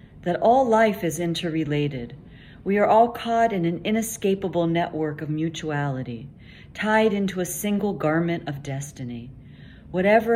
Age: 40-59